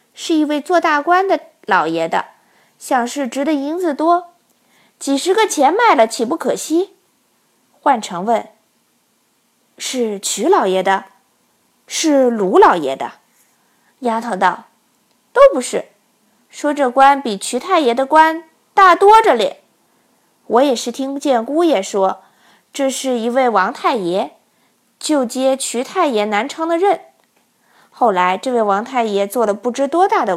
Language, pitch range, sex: Chinese, 225-315 Hz, female